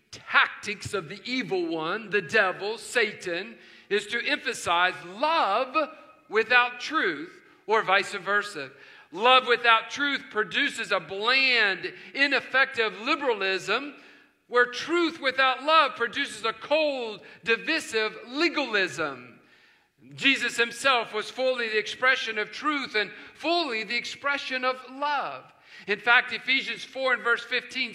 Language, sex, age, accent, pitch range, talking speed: English, male, 50-69, American, 205-280 Hz, 120 wpm